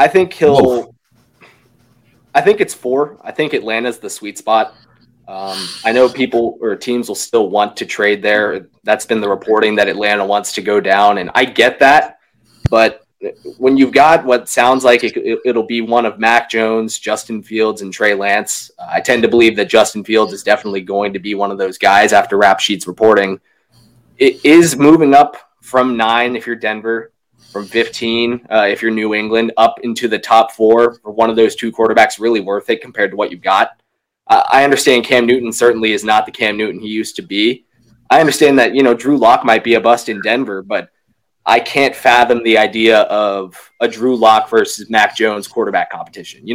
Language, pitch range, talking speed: English, 105-125 Hz, 205 wpm